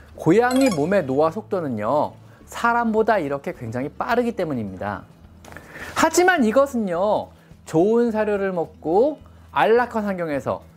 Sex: male